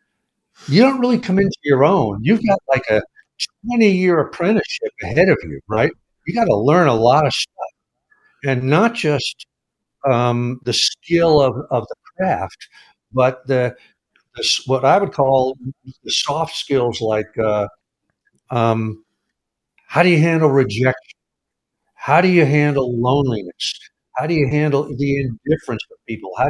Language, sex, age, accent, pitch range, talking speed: English, male, 60-79, American, 125-170 Hz, 150 wpm